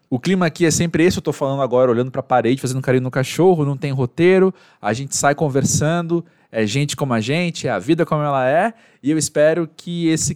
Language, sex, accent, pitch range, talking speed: Portuguese, male, Brazilian, 130-170 Hz, 230 wpm